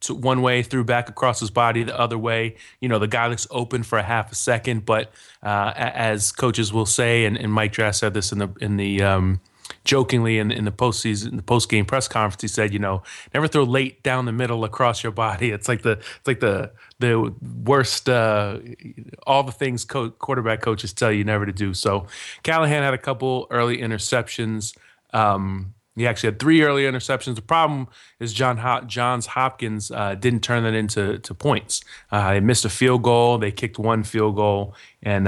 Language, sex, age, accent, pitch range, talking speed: English, male, 30-49, American, 105-125 Hz, 210 wpm